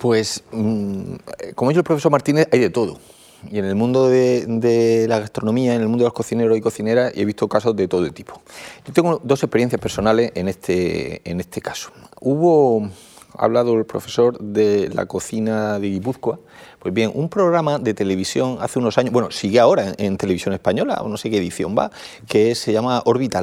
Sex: male